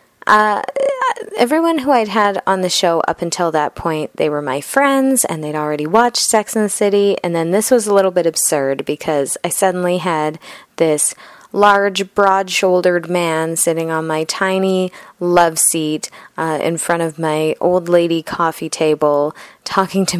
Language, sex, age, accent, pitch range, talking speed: English, female, 20-39, American, 155-190 Hz, 170 wpm